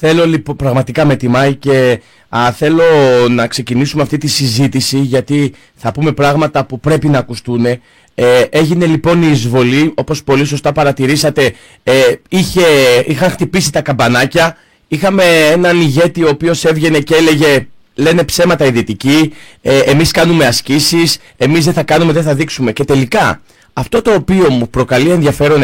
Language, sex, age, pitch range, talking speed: Greek, male, 30-49, 135-175 Hz, 155 wpm